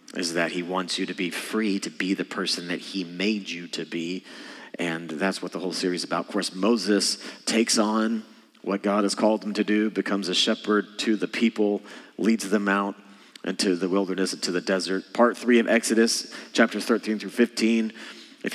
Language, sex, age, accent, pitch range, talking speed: English, male, 30-49, American, 100-115 Hz, 200 wpm